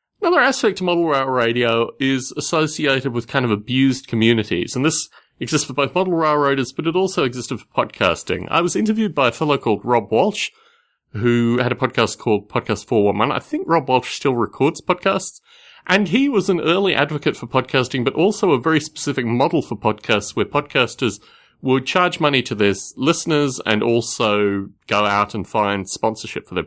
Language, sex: English, male